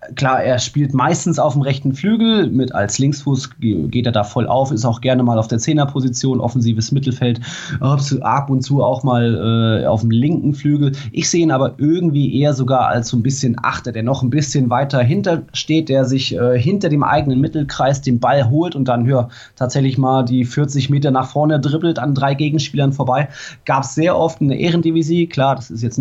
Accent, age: German, 20-39